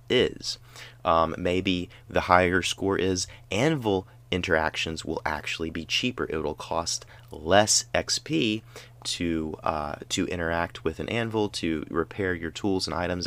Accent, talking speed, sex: American, 140 wpm, male